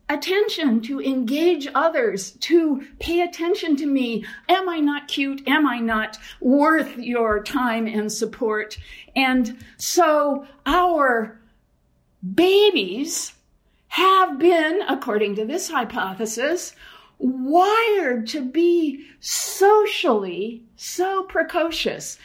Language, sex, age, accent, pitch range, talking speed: English, female, 50-69, American, 210-295 Hz, 100 wpm